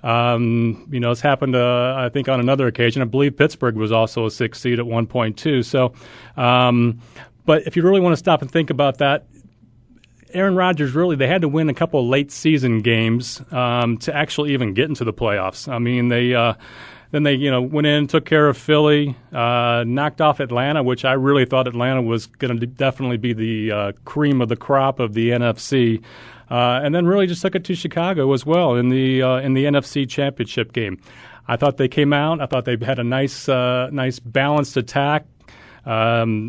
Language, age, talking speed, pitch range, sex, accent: English, 30-49, 215 wpm, 120-150 Hz, male, American